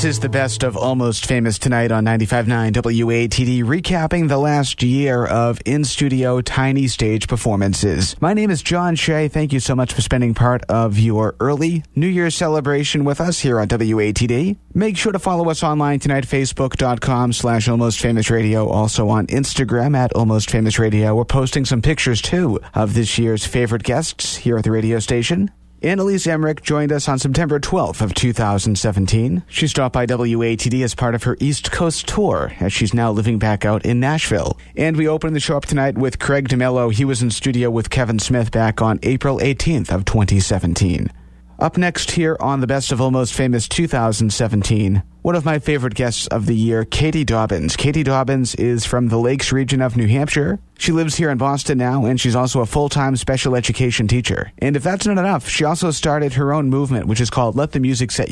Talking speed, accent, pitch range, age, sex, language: 195 wpm, American, 115-145 Hz, 30-49, male, English